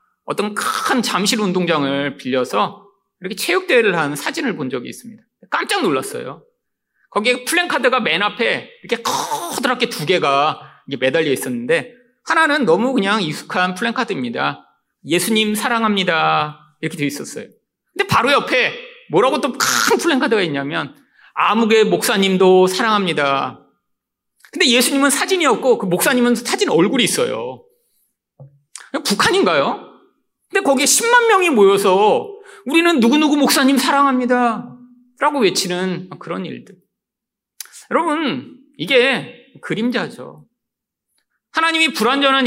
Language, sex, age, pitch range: Korean, male, 30-49, 195-315 Hz